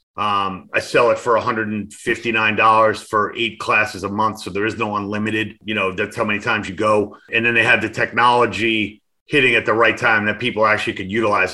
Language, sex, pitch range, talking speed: English, male, 110-125 Hz, 210 wpm